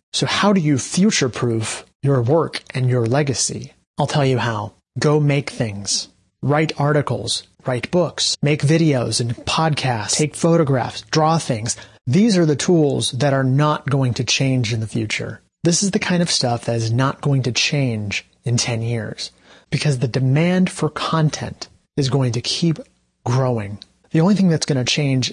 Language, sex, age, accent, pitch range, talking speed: English, male, 30-49, American, 120-155 Hz, 175 wpm